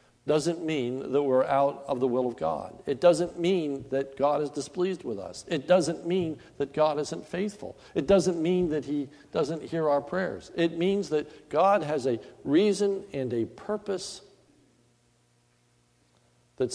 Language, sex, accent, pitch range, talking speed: English, male, American, 110-150 Hz, 165 wpm